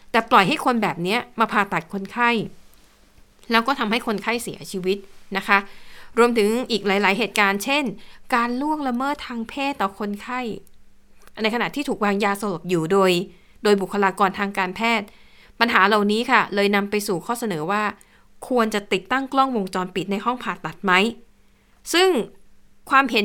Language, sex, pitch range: Thai, female, 200-245 Hz